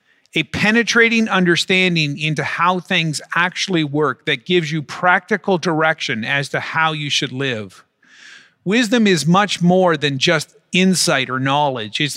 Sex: male